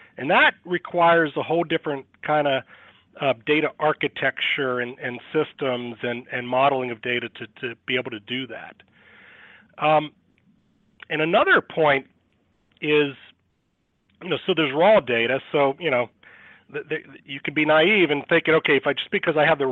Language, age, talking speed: English, 40-59, 170 wpm